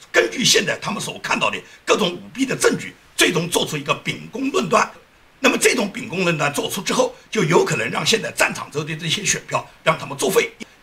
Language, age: Chinese, 50-69